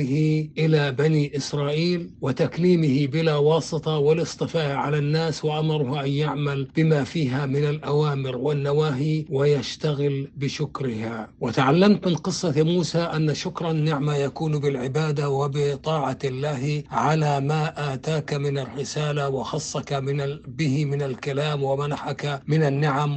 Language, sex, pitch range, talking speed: Arabic, male, 135-155 Hz, 115 wpm